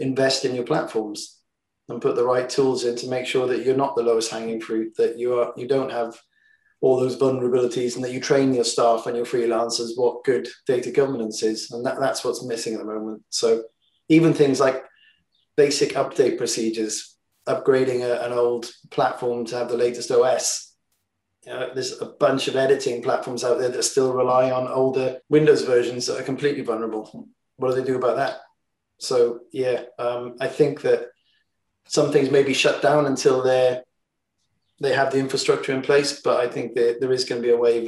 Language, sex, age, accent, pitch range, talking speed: English, male, 30-49, British, 120-150 Hz, 195 wpm